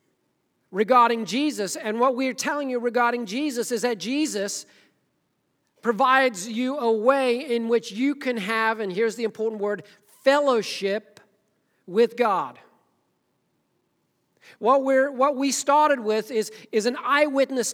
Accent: American